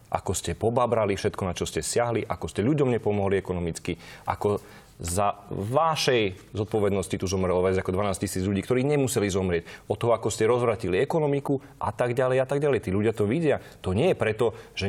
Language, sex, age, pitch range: Slovak, male, 30-49, 100-145 Hz